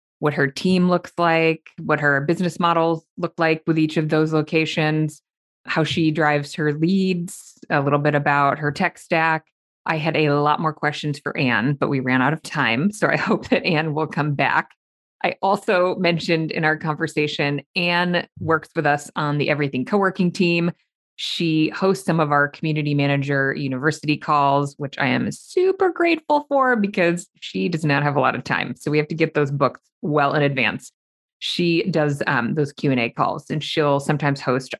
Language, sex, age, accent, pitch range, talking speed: English, female, 20-39, American, 145-170 Hz, 190 wpm